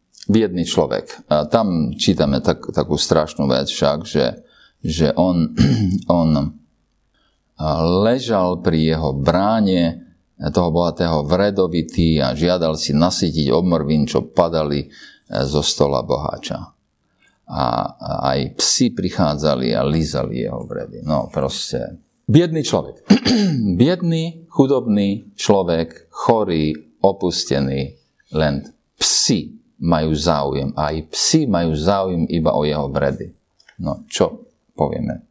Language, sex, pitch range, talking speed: Slovak, male, 75-100 Hz, 110 wpm